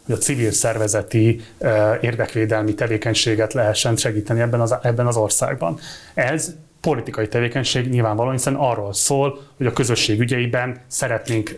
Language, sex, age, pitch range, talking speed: Hungarian, male, 30-49, 115-135 Hz, 135 wpm